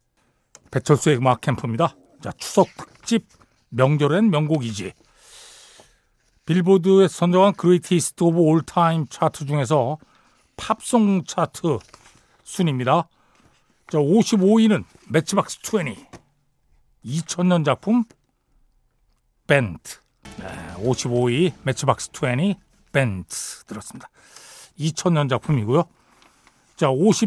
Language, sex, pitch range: Korean, male, 140-200 Hz